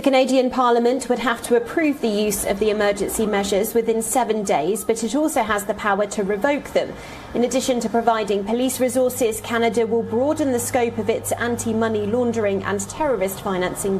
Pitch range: 205-240 Hz